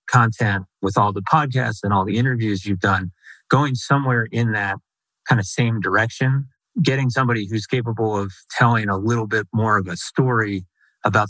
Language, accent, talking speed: English, American, 175 wpm